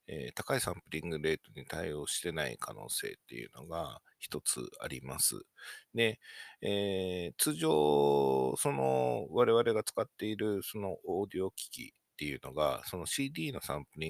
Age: 50-69